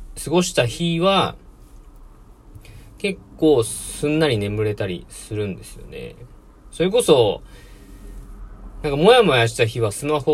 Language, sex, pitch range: Japanese, male, 95-155 Hz